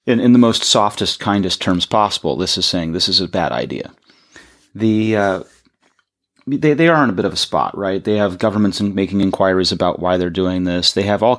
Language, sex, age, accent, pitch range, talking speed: English, male, 30-49, American, 95-110 Hz, 215 wpm